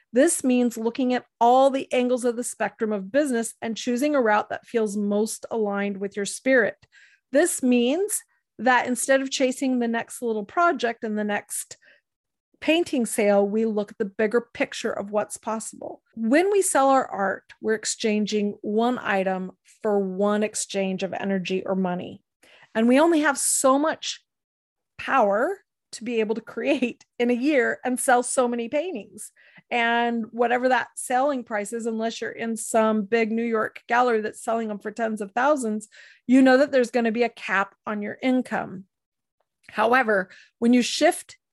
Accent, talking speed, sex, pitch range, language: American, 175 wpm, female, 215-265 Hz, English